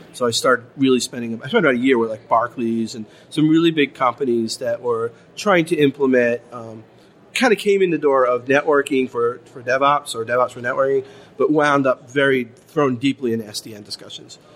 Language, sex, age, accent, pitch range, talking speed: English, male, 40-59, American, 125-155 Hz, 195 wpm